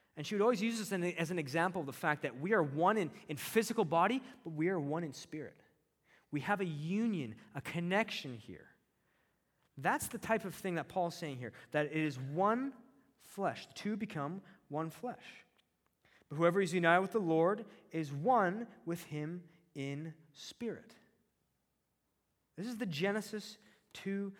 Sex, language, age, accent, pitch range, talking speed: male, English, 20-39, American, 160-220 Hz, 170 wpm